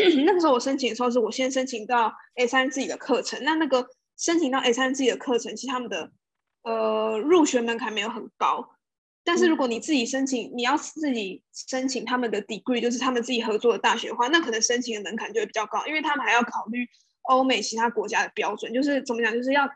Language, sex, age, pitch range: Chinese, female, 20-39, 225-265 Hz